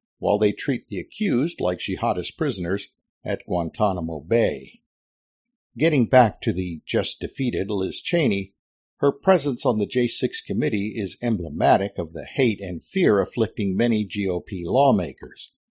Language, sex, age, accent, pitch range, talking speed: English, male, 50-69, American, 95-130 Hz, 135 wpm